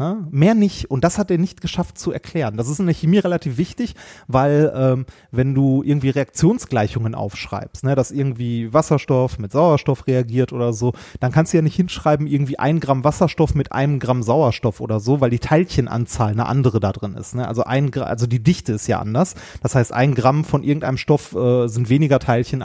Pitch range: 120-160 Hz